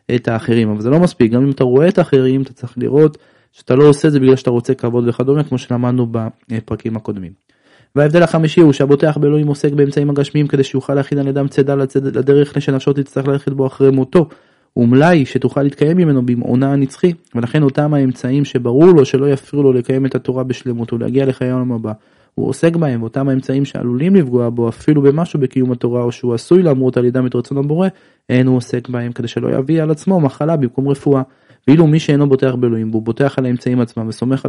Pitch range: 125-145 Hz